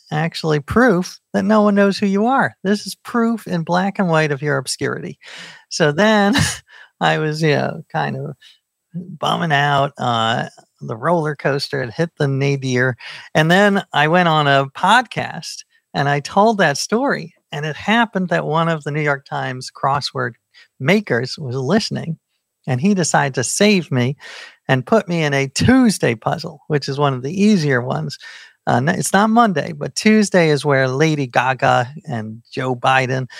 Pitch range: 130-175 Hz